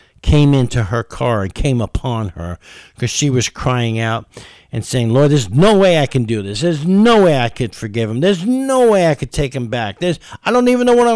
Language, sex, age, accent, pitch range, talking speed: English, male, 50-69, American, 115-155 Hz, 235 wpm